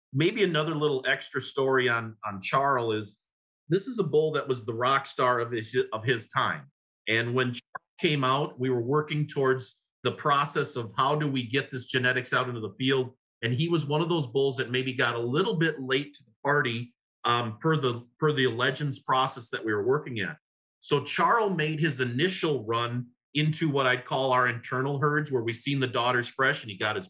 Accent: American